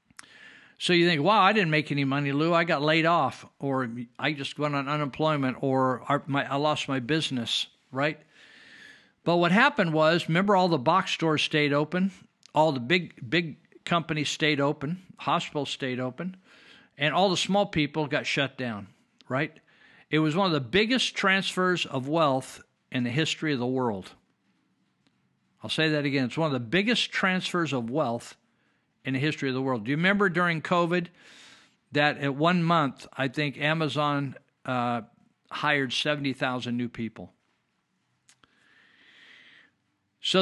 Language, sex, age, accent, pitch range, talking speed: English, male, 50-69, American, 135-175 Hz, 160 wpm